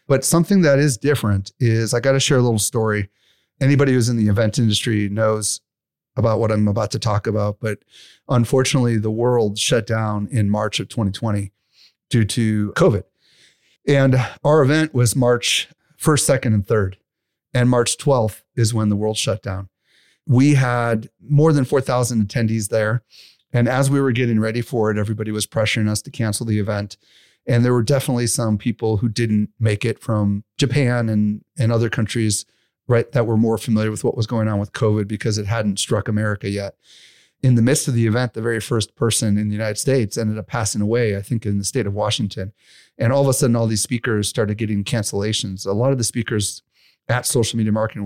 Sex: male